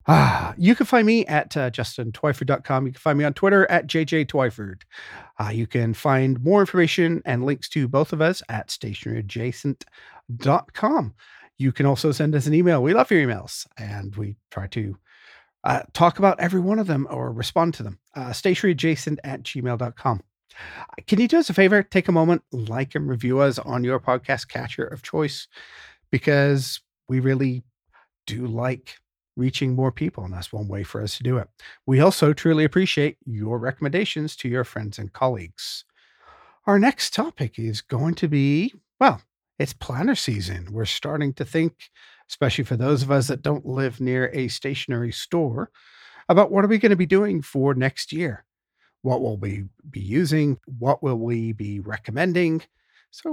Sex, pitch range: male, 120-165 Hz